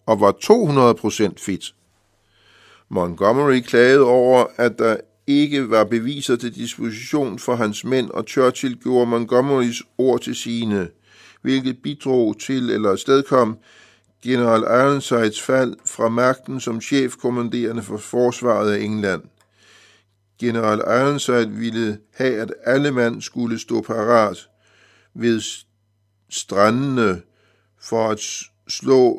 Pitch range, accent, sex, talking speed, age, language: 110-130 Hz, native, male, 115 wpm, 60-79, Danish